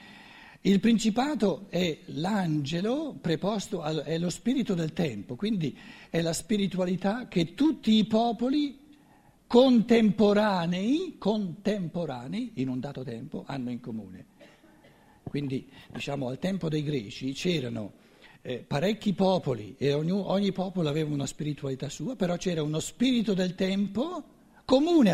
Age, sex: 60-79, male